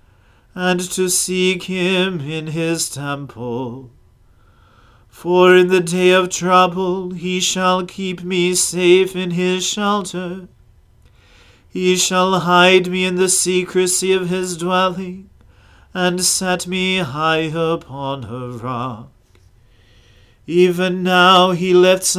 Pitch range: 125-185 Hz